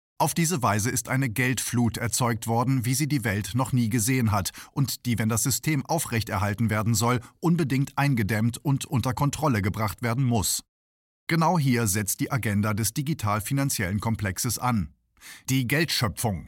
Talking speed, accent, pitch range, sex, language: 155 wpm, German, 110-140 Hz, male, German